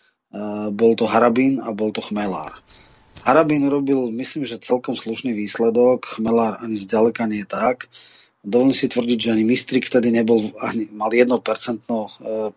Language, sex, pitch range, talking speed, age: Slovak, male, 110-125 Hz, 150 wpm, 30-49